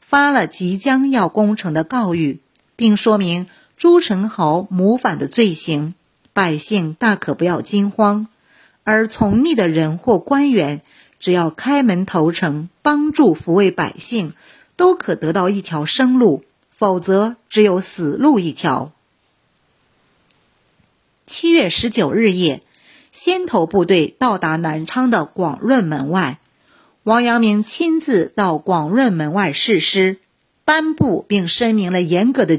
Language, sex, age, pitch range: Chinese, female, 50-69, 175-250 Hz